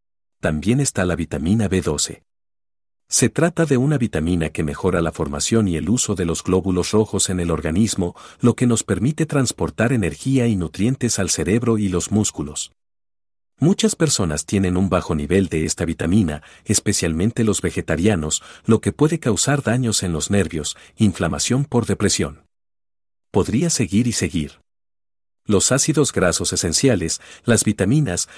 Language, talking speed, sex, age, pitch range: Spanish, 150 wpm, male, 50-69, 85-120 Hz